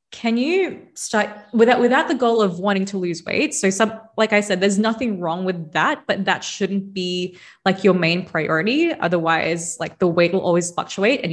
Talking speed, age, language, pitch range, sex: 200 wpm, 20-39, English, 175-220 Hz, female